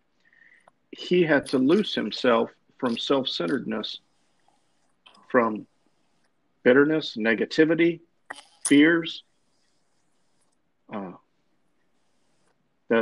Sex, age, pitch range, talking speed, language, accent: male, 50-69, 125-165 Hz, 60 wpm, English, American